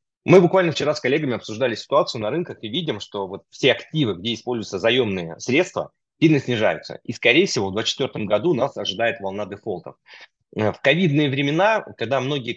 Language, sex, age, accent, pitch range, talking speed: Russian, male, 30-49, native, 120-155 Hz, 165 wpm